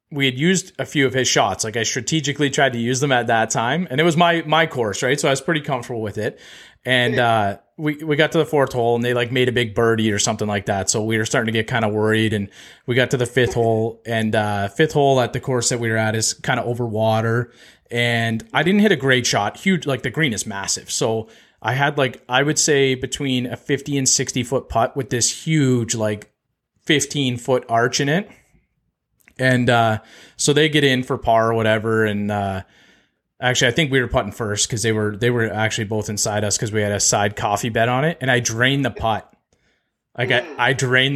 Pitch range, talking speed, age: 115-135 Hz, 240 wpm, 30-49